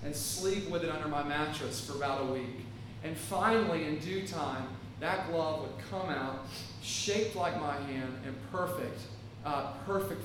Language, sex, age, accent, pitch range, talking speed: English, male, 40-59, American, 115-190 Hz, 170 wpm